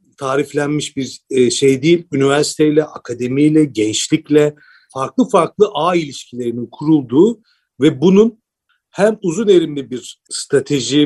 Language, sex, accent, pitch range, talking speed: Turkish, male, native, 140-205 Hz, 105 wpm